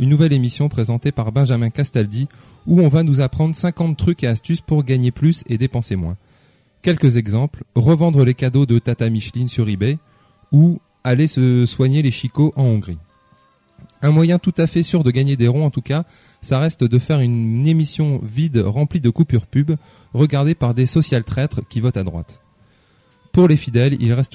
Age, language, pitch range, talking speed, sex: 20-39, French, 115-145 Hz, 190 wpm, male